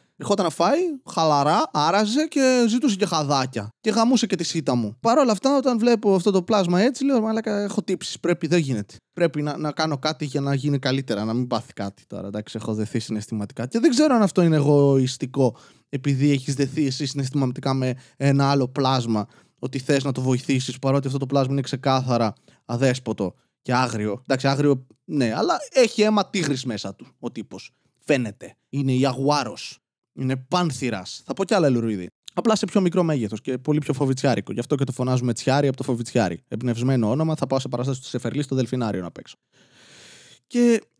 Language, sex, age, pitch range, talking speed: Greek, male, 20-39, 120-170 Hz, 190 wpm